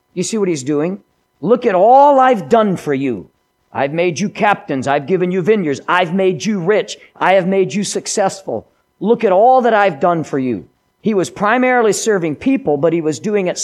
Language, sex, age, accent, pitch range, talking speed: English, male, 50-69, American, 140-200 Hz, 205 wpm